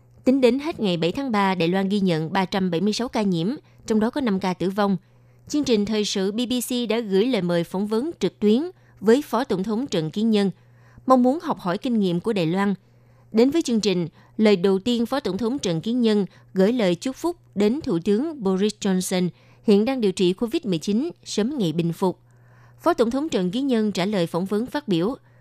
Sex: female